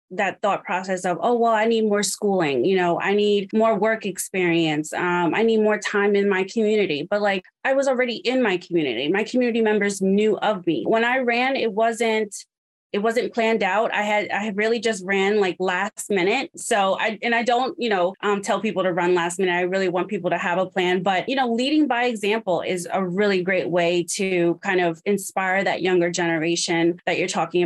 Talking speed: 220 wpm